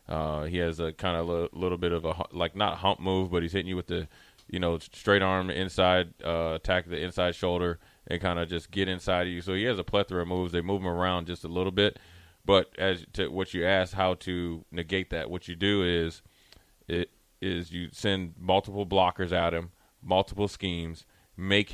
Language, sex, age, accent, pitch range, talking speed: English, male, 20-39, American, 90-105 Hz, 220 wpm